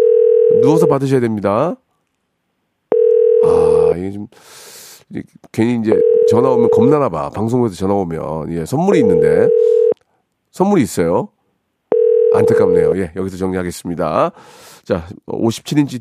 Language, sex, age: Korean, male, 40-59